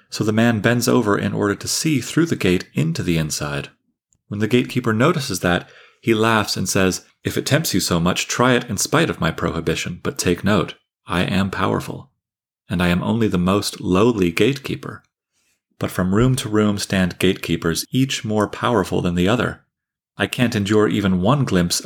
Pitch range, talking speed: 90-110 Hz, 190 wpm